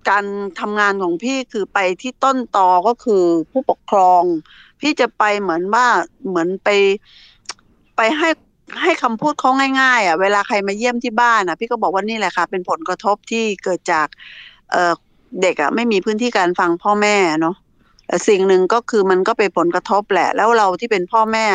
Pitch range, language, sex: 180-230 Hz, Thai, female